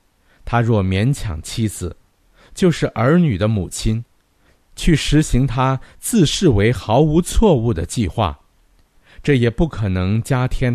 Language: Chinese